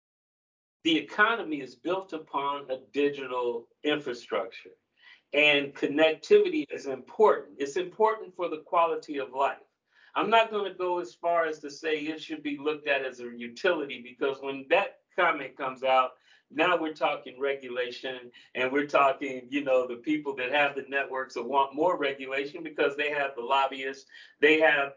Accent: American